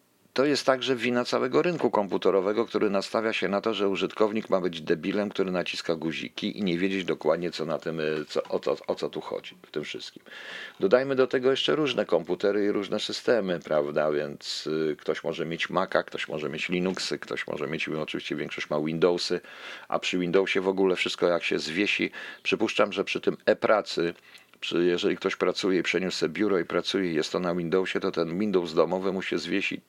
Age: 50-69